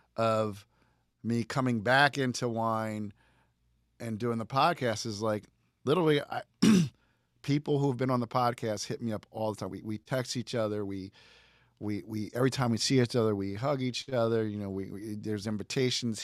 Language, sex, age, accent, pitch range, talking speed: English, male, 40-59, American, 95-120 Hz, 185 wpm